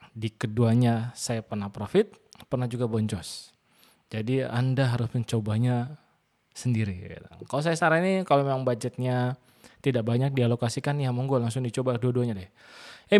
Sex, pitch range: male, 115-140 Hz